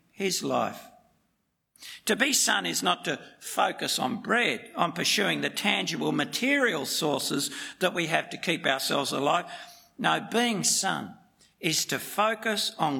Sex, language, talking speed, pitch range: male, English, 145 wpm, 185-240 Hz